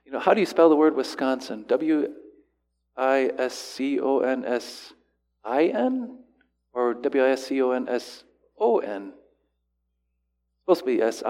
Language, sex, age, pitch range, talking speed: English, male, 40-59, 125-165 Hz, 160 wpm